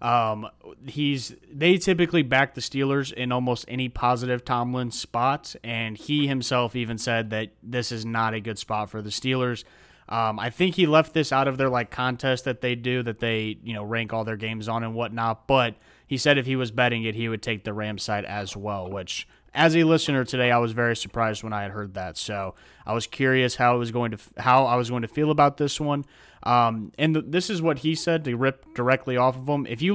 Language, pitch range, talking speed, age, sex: English, 110-135 Hz, 235 wpm, 30-49, male